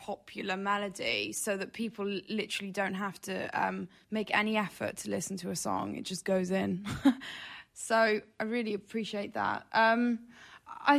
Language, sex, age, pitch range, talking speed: German, female, 20-39, 195-230 Hz, 160 wpm